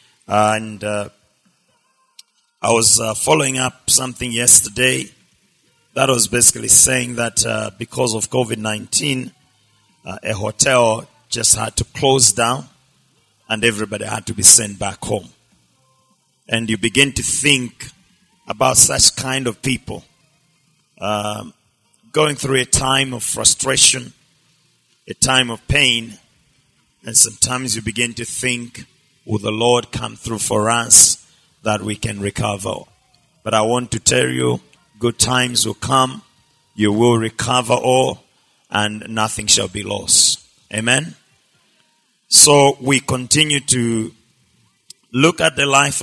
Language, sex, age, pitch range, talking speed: English, male, 40-59, 110-130 Hz, 130 wpm